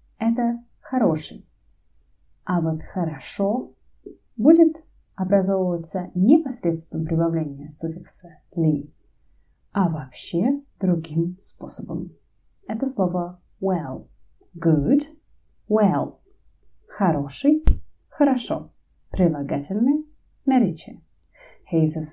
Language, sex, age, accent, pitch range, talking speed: Russian, female, 30-49, native, 155-225 Hz, 75 wpm